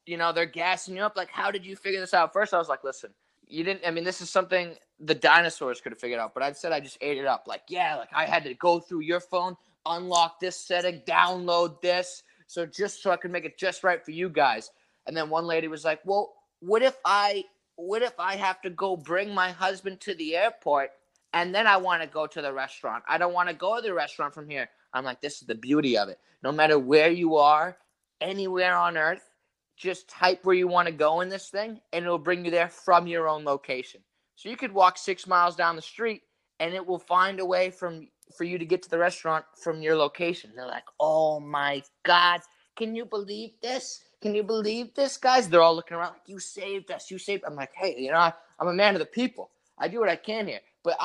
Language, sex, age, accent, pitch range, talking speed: English, male, 20-39, American, 165-200 Hz, 250 wpm